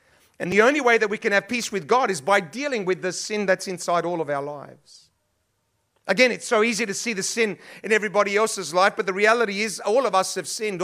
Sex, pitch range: male, 180-235 Hz